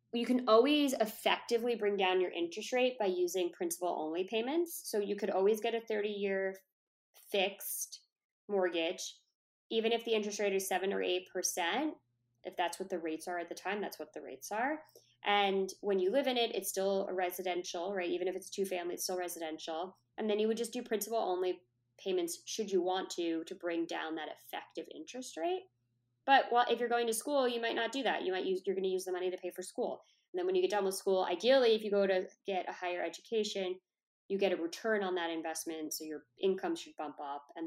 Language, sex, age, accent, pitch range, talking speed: English, female, 20-39, American, 170-225 Hz, 220 wpm